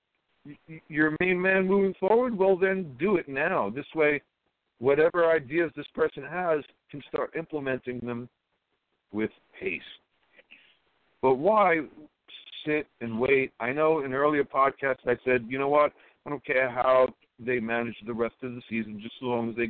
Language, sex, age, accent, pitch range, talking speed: English, male, 60-79, American, 125-160 Hz, 165 wpm